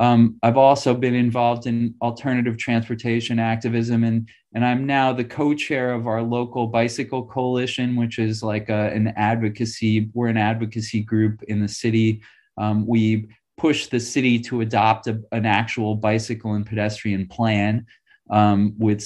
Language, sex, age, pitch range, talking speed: English, male, 30-49, 115-135 Hz, 155 wpm